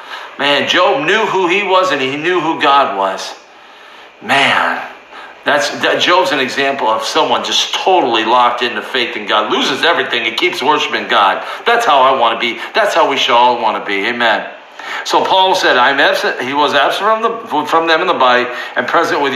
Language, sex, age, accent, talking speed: English, male, 50-69, American, 205 wpm